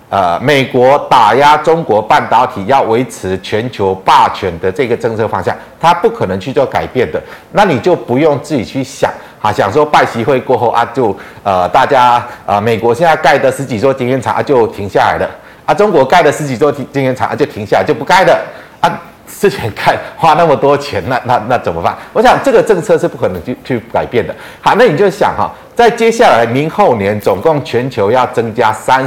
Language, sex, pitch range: Chinese, male, 115-175 Hz